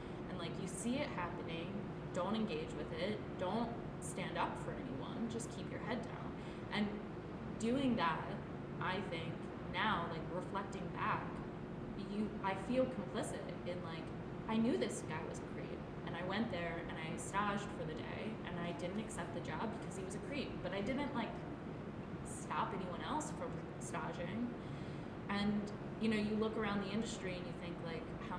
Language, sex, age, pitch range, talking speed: English, female, 20-39, 170-215 Hz, 180 wpm